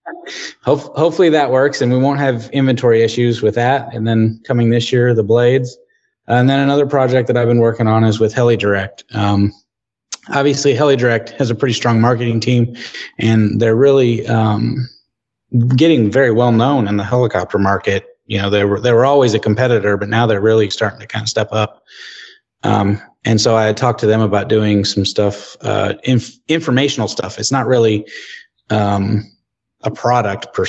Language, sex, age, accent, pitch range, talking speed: English, male, 30-49, American, 105-120 Hz, 180 wpm